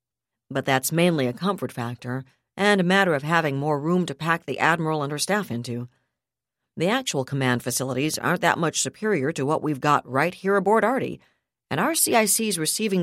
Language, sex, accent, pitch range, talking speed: English, female, American, 130-185 Hz, 190 wpm